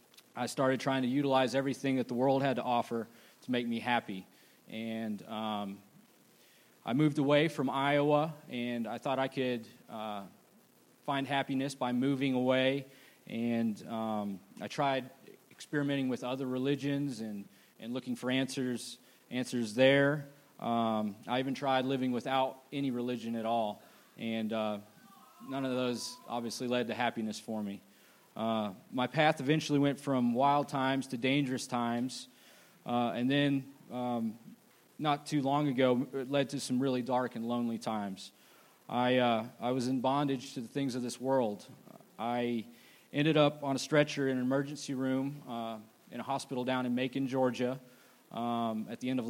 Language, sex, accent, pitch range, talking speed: English, male, American, 115-135 Hz, 160 wpm